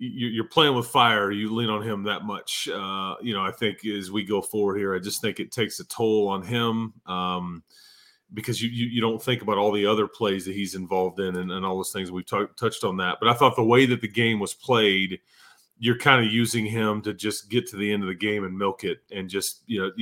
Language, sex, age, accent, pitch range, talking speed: English, male, 30-49, American, 100-120 Hz, 260 wpm